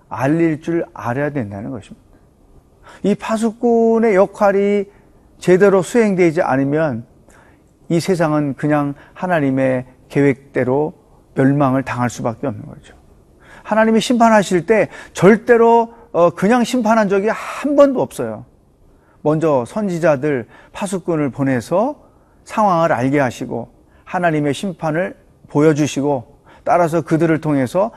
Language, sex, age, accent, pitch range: Korean, male, 40-59, native, 135-195 Hz